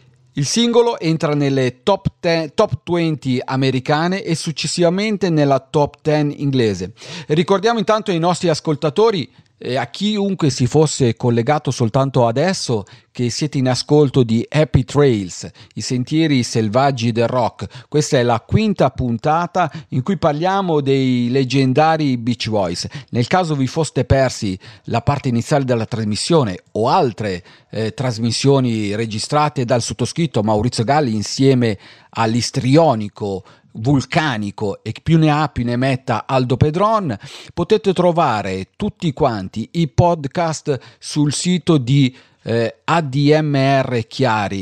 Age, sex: 40-59, male